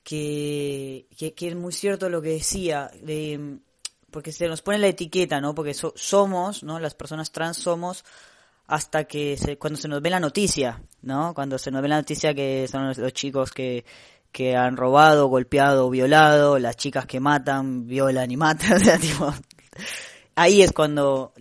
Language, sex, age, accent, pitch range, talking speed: Spanish, female, 10-29, Argentinian, 130-155 Hz, 175 wpm